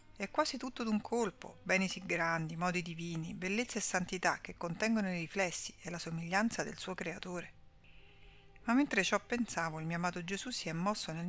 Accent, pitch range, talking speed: native, 165-205 Hz, 185 wpm